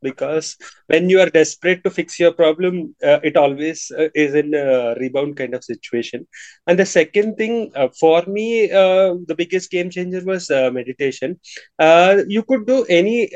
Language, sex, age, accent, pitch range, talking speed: English, male, 20-39, Indian, 140-190 Hz, 180 wpm